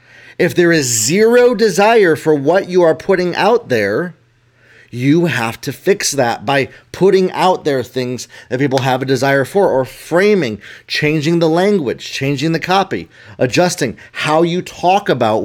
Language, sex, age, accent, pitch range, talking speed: English, male, 30-49, American, 120-160 Hz, 160 wpm